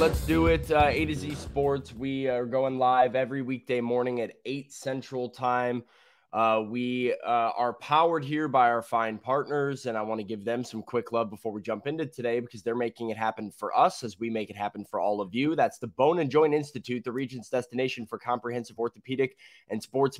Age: 20-39